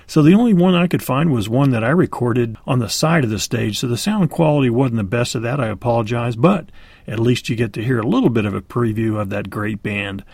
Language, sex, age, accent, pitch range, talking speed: English, male, 40-59, American, 110-160 Hz, 265 wpm